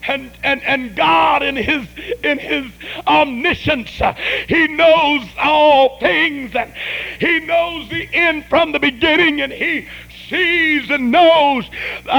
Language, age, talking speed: English, 50-69, 135 wpm